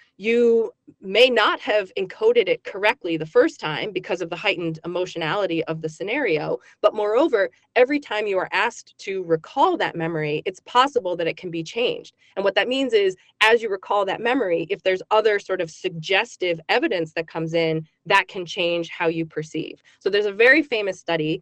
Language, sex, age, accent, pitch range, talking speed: English, female, 20-39, American, 170-250 Hz, 190 wpm